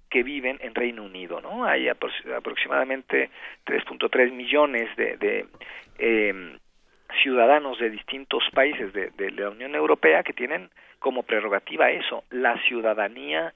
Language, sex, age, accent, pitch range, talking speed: Spanish, male, 50-69, Mexican, 115-140 Hz, 130 wpm